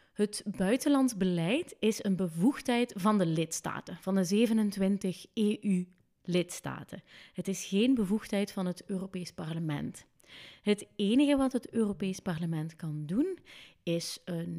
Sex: female